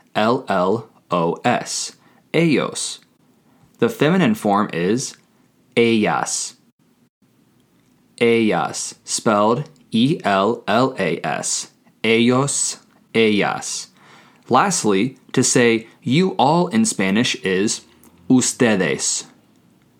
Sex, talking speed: male, 65 wpm